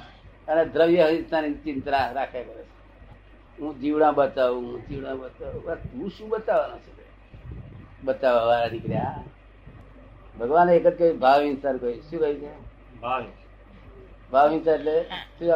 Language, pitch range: Gujarati, 120-160 Hz